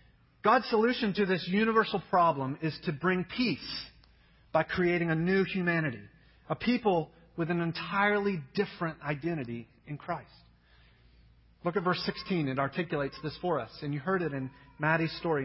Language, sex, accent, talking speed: English, male, American, 155 wpm